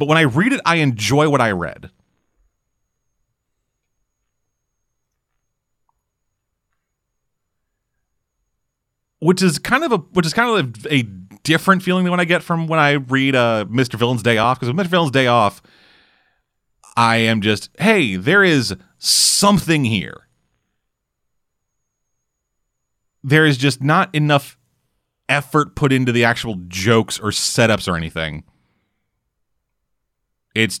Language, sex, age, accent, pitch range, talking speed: English, male, 30-49, American, 110-175 Hz, 130 wpm